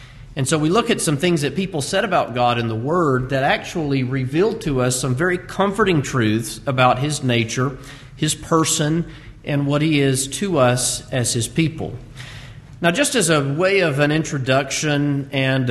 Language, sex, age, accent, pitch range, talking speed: English, male, 40-59, American, 125-160 Hz, 180 wpm